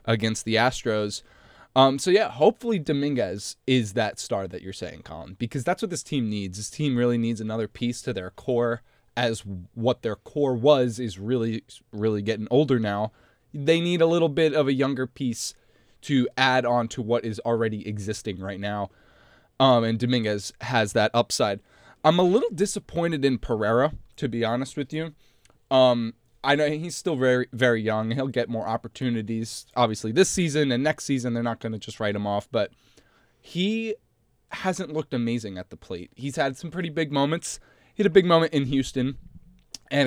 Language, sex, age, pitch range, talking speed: English, male, 20-39, 110-140 Hz, 185 wpm